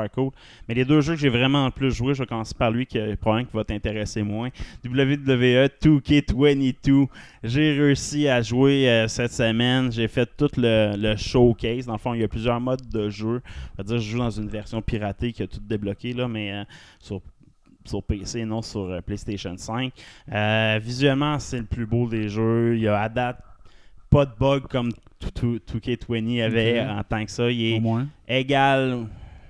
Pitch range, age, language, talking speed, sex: 105-125 Hz, 20-39, English, 200 wpm, male